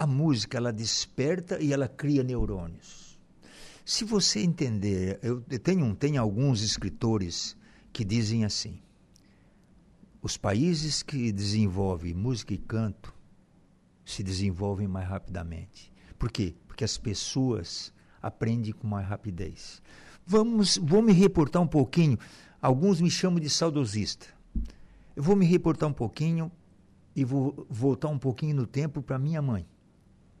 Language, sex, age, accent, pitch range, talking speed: Portuguese, male, 60-79, Brazilian, 105-155 Hz, 130 wpm